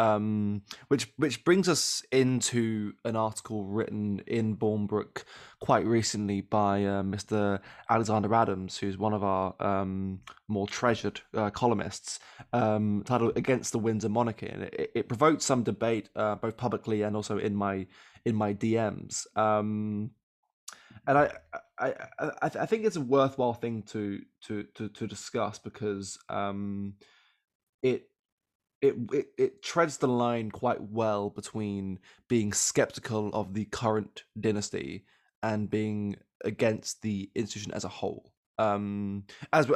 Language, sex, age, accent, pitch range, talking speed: English, male, 20-39, British, 100-115 Hz, 145 wpm